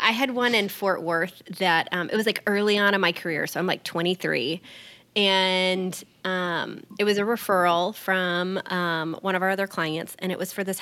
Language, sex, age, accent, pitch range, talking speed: English, female, 20-39, American, 180-220 Hz, 210 wpm